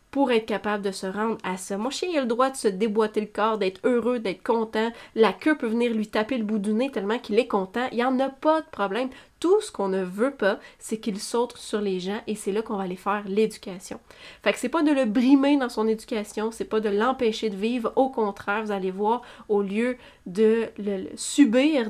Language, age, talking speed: French, 20-39, 245 wpm